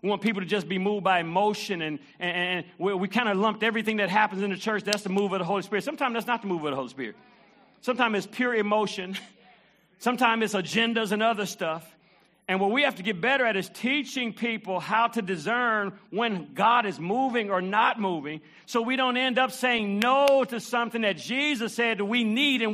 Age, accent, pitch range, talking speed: 50-69, American, 205-250 Hz, 215 wpm